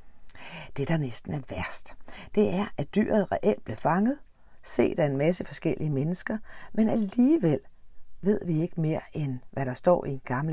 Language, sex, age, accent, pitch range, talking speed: Danish, female, 60-79, native, 125-180 Hz, 175 wpm